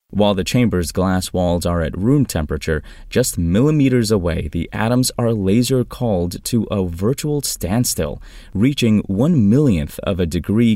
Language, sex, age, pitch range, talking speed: English, male, 20-39, 85-115 Hz, 145 wpm